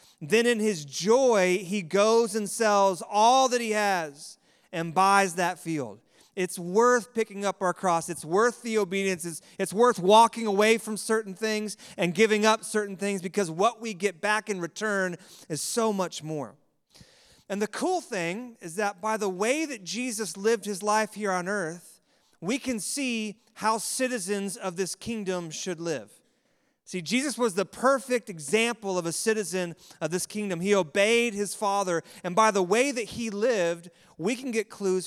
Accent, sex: American, male